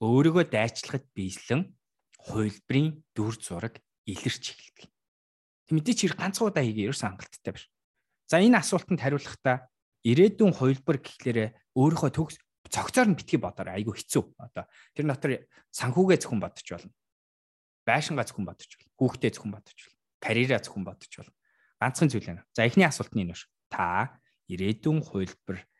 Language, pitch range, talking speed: English, 95-145 Hz, 80 wpm